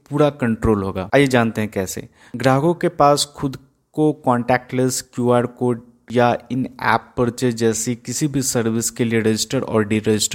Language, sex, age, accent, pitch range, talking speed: Hindi, male, 20-39, native, 110-125 Hz, 160 wpm